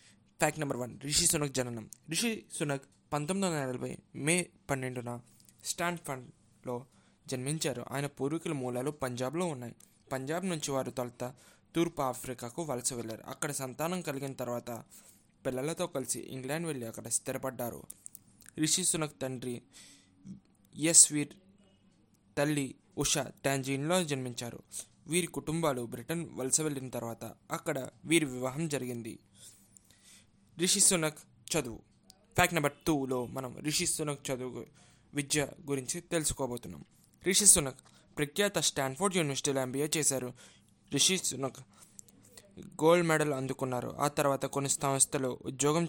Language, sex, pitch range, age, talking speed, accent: Telugu, male, 125-160 Hz, 20-39, 110 wpm, native